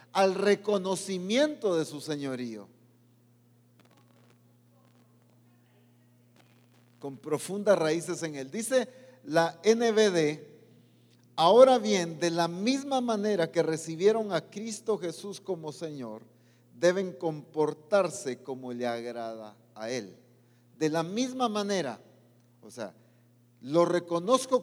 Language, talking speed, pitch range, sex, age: English, 100 wpm, 120-205 Hz, male, 40-59